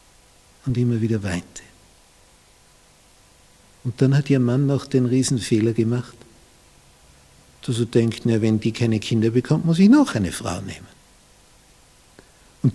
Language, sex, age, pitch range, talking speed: German, male, 60-79, 100-130 Hz, 130 wpm